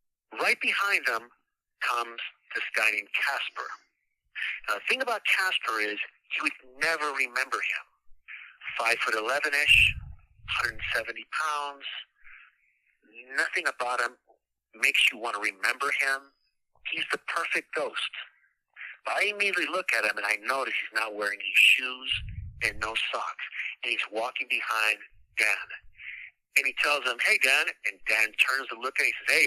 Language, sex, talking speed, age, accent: English, male, 160 wpm, 50-69, American